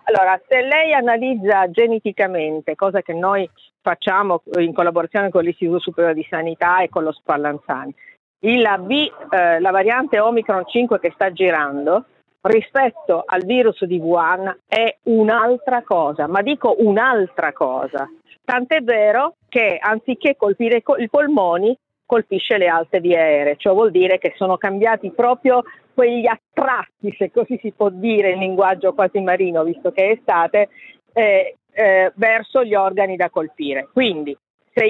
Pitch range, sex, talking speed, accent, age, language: 180-240 Hz, female, 150 wpm, native, 50-69, Italian